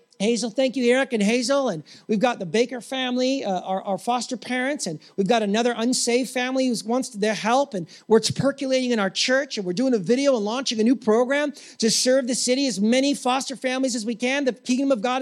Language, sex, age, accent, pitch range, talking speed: English, male, 40-59, American, 225-275 Hz, 235 wpm